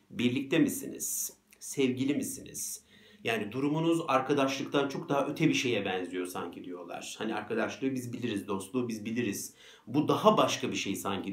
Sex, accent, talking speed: male, native, 150 wpm